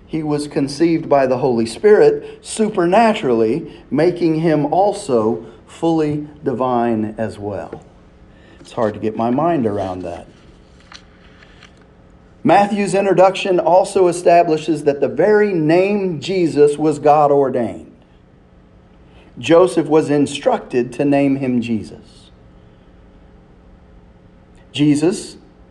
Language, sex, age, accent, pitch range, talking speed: English, male, 40-59, American, 120-175 Hz, 100 wpm